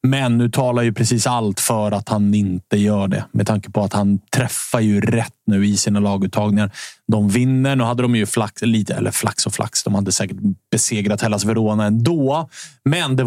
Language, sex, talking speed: Swedish, male, 195 wpm